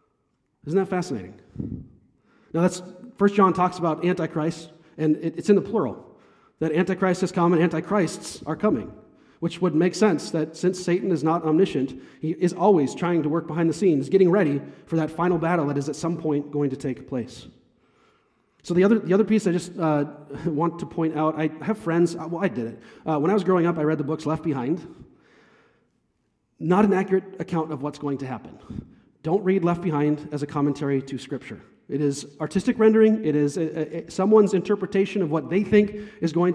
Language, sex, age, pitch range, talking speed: English, male, 30-49, 145-180 Hz, 200 wpm